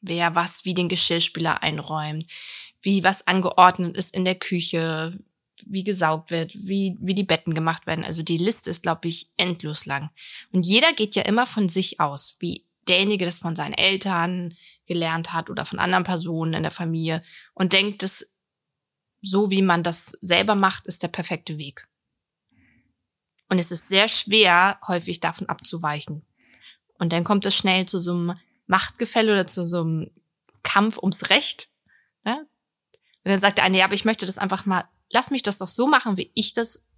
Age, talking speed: 20-39, 180 wpm